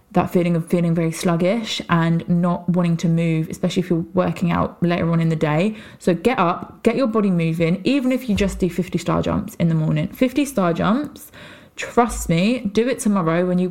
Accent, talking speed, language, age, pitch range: British, 215 wpm, English, 20-39, 170-200 Hz